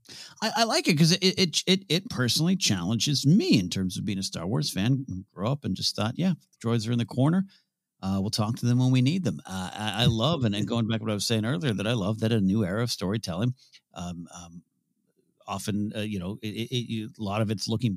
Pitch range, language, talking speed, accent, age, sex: 100-140 Hz, English, 255 wpm, American, 50-69, male